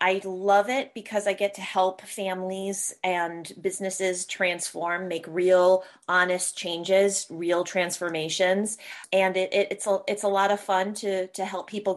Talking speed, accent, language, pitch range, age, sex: 160 wpm, American, English, 185-245 Hz, 30-49, female